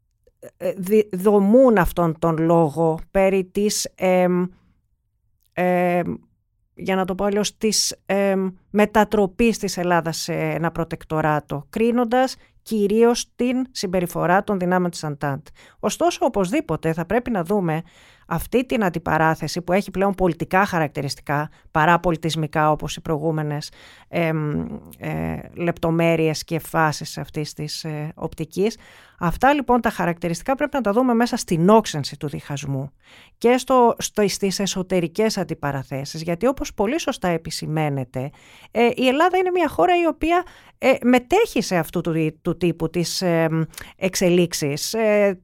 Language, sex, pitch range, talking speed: Greek, female, 160-215 Hz, 135 wpm